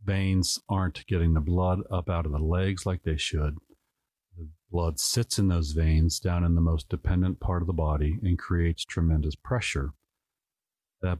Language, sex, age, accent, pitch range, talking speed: English, male, 50-69, American, 80-95 Hz, 175 wpm